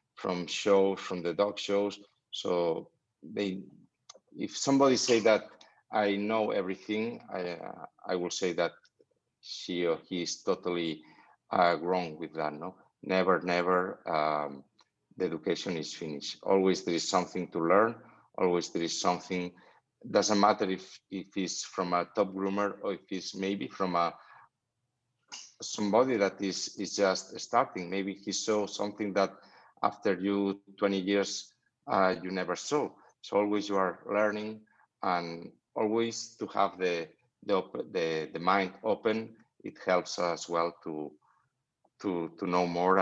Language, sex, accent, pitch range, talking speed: English, male, Spanish, 85-100 Hz, 150 wpm